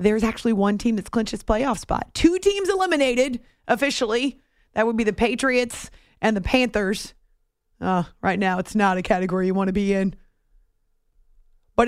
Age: 30-49